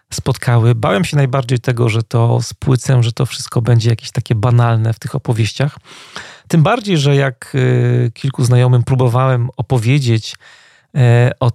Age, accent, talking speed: 30-49, native, 140 wpm